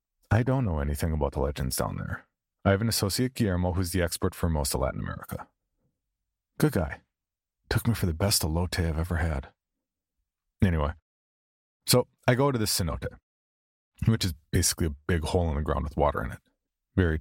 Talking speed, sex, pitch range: 190 wpm, male, 80-105 Hz